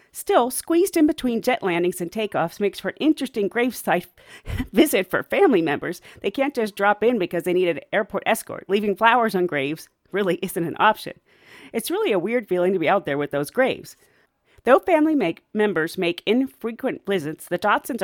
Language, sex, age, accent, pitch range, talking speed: English, female, 40-59, American, 180-280 Hz, 195 wpm